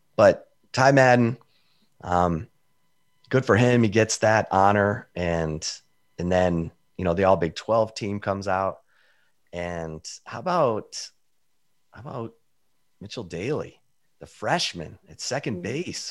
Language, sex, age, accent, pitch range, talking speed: English, male, 30-49, American, 90-120 Hz, 130 wpm